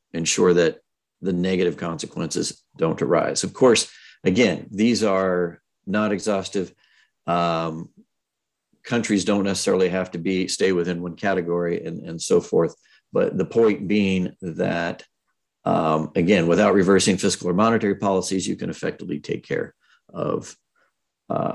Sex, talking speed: male, 135 wpm